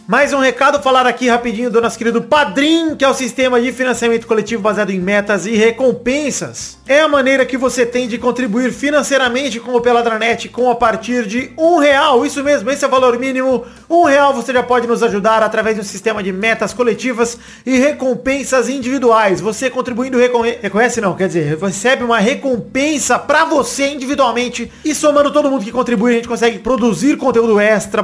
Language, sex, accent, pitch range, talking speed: Portuguese, male, Brazilian, 215-255 Hz, 190 wpm